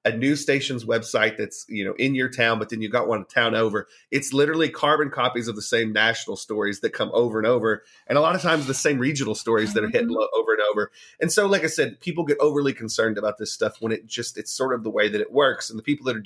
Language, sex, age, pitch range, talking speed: English, male, 30-49, 110-150 Hz, 275 wpm